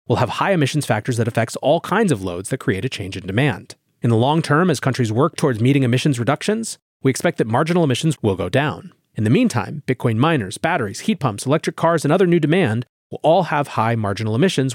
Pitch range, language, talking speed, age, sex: 115-160 Hz, English, 230 wpm, 30-49, male